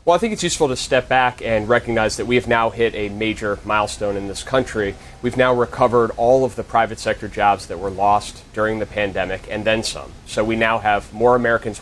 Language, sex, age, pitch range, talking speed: English, male, 30-49, 105-125 Hz, 230 wpm